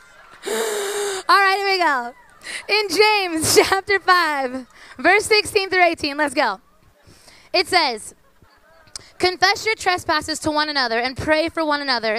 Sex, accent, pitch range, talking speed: female, American, 260-330 Hz, 140 wpm